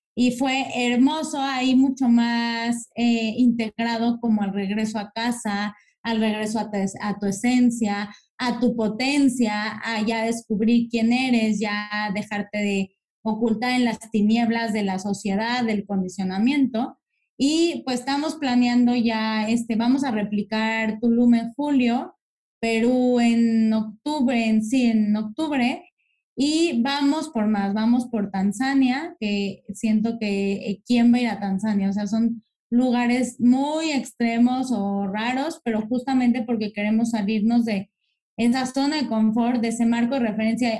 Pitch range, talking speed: 215-255 Hz, 145 wpm